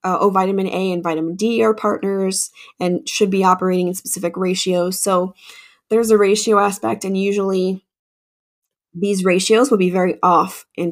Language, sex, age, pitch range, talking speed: English, female, 20-39, 175-205 Hz, 165 wpm